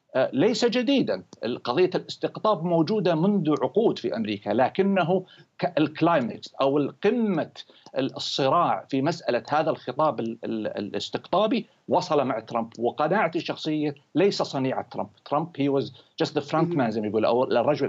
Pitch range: 130-180 Hz